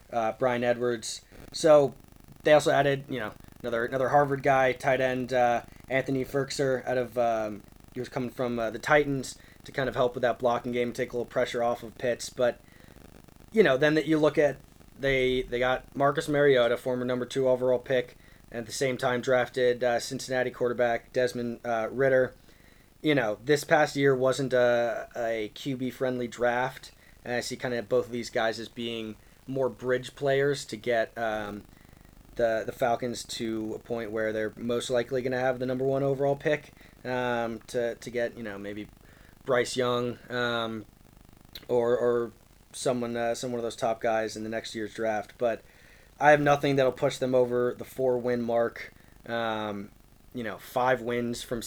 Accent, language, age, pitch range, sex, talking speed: American, English, 20-39, 115-130 Hz, male, 185 wpm